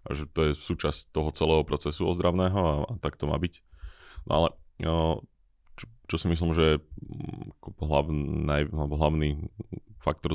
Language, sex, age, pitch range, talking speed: Slovak, male, 20-39, 75-85 Hz, 155 wpm